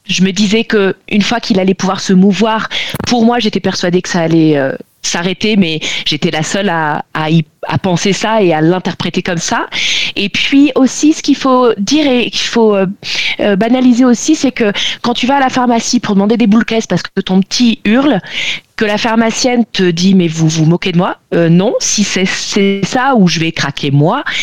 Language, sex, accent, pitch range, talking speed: French, female, French, 190-235 Hz, 215 wpm